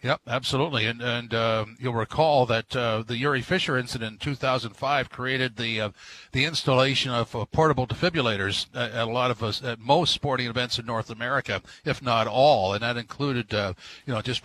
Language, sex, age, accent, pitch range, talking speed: English, male, 50-69, American, 115-145 Hz, 210 wpm